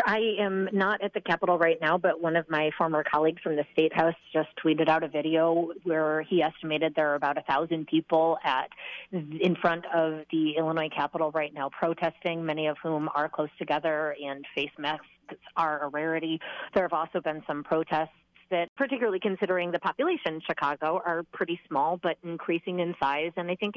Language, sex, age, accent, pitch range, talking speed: English, female, 30-49, American, 155-180 Hz, 195 wpm